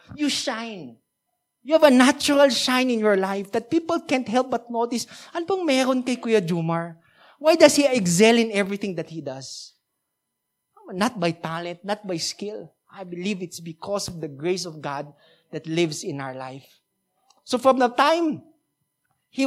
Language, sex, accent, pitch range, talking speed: English, male, Filipino, 185-260 Hz, 155 wpm